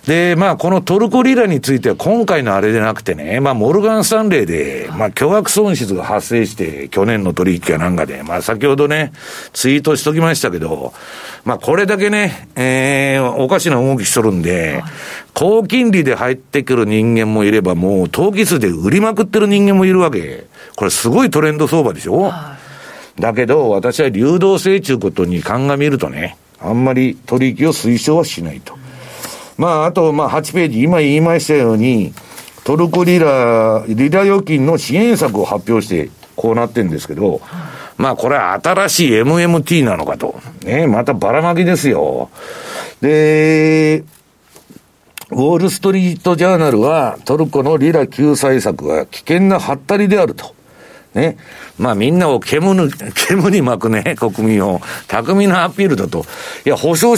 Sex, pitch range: male, 120-190 Hz